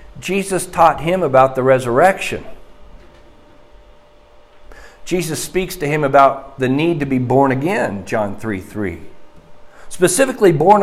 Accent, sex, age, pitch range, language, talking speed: American, male, 50-69, 130-190 Hz, English, 120 wpm